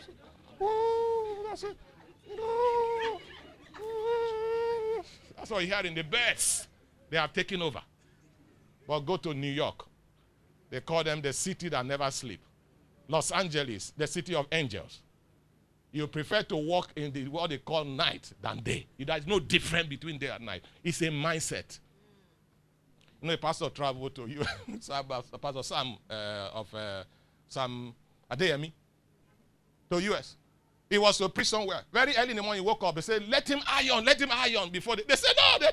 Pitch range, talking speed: 140-210 Hz, 175 wpm